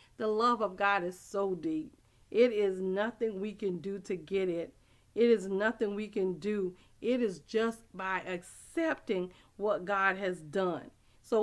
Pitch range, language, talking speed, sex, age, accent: 190-250 Hz, English, 170 wpm, female, 40-59, American